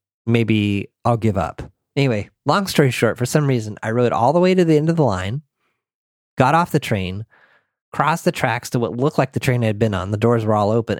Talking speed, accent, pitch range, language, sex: 240 wpm, American, 105-140 Hz, English, male